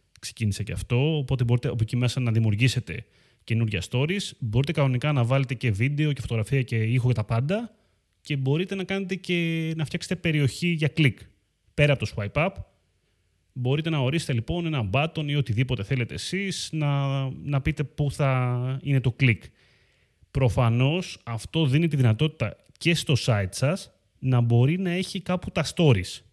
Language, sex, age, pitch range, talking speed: Greek, male, 30-49, 110-150 Hz, 170 wpm